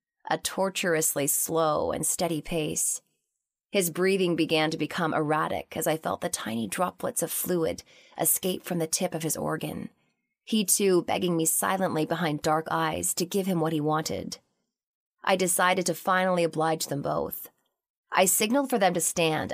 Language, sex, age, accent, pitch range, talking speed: English, female, 20-39, American, 155-185 Hz, 165 wpm